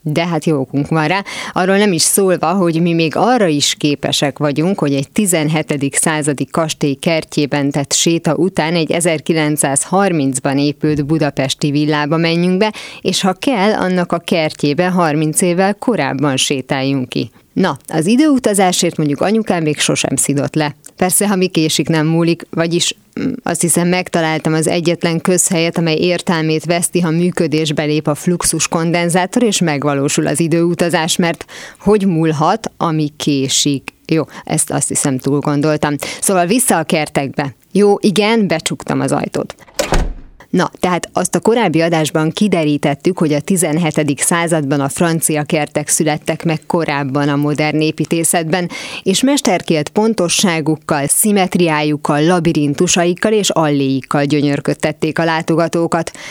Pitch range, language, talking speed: 150-185 Hz, Hungarian, 135 wpm